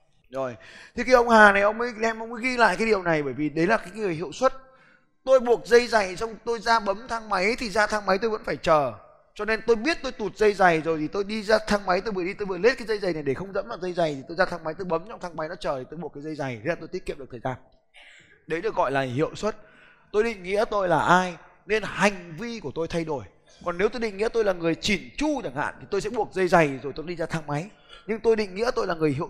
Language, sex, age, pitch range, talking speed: Vietnamese, male, 20-39, 165-225 Hz, 305 wpm